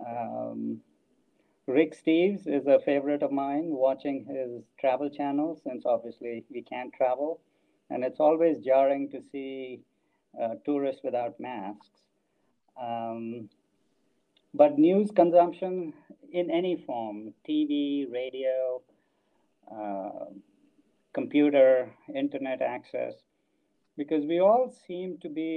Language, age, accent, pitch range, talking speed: English, 50-69, Indian, 125-160 Hz, 110 wpm